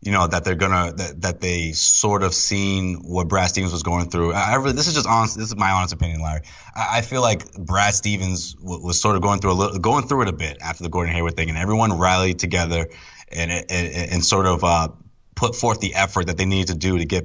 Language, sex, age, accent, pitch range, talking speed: English, male, 20-39, American, 85-105 Hz, 260 wpm